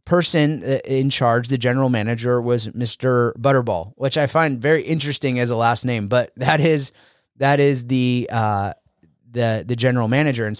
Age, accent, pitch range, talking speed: 30-49, American, 120-155 Hz, 170 wpm